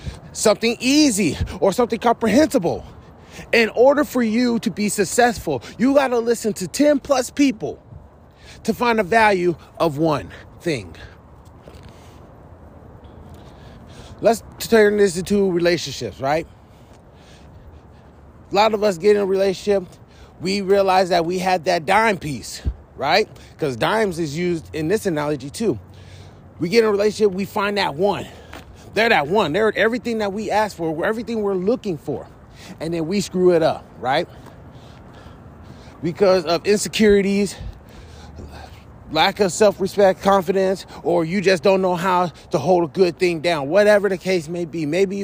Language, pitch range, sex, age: English, 165-210 Hz, male, 30-49